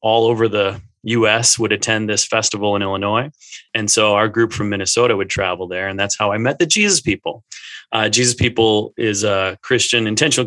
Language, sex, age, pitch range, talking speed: English, male, 30-49, 105-125 Hz, 200 wpm